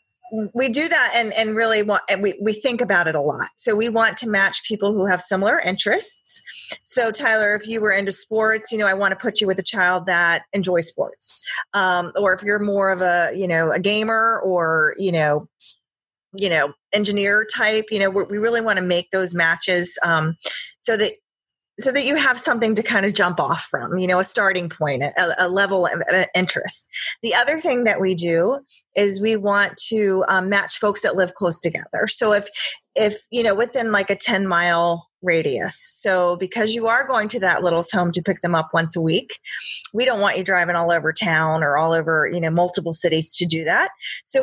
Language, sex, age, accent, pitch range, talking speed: English, female, 30-49, American, 175-220 Hz, 215 wpm